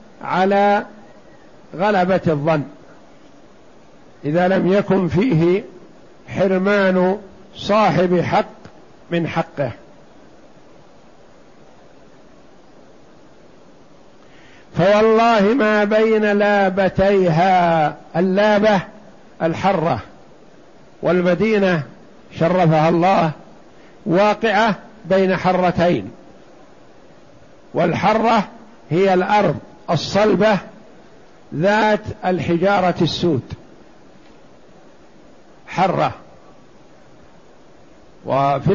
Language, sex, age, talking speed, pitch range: Arabic, male, 60-79, 50 wpm, 170-200 Hz